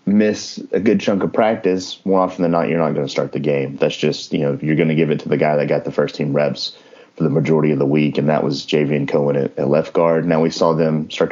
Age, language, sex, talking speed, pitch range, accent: 30-49, English, male, 290 wpm, 75-90 Hz, American